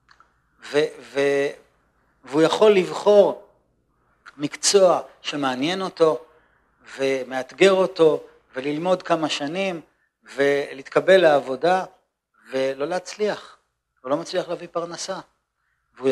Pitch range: 140-195 Hz